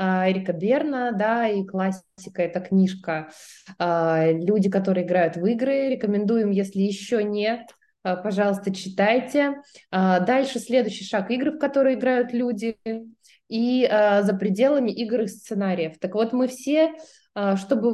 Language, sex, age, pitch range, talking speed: Russian, female, 20-39, 195-245 Hz, 125 wpm